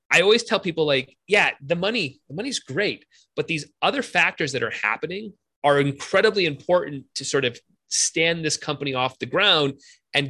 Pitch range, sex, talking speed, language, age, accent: 130-165 Hz, male, 180 wpm, English, 30-49, American